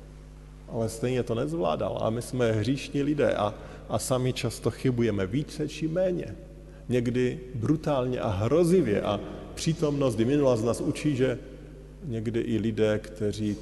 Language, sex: Slovak, male